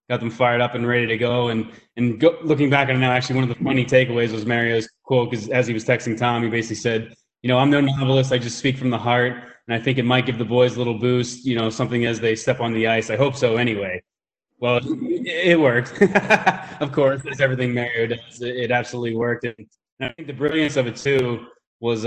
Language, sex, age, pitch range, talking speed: English, male, 20-39, 115-135 Hz, 245 wpm